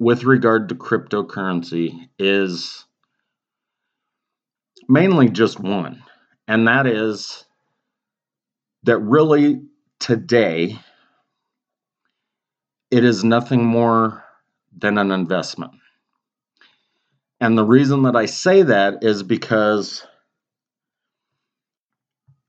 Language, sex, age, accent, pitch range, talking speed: English, male, 40-59, American, 105-135 Hz, 80 wpm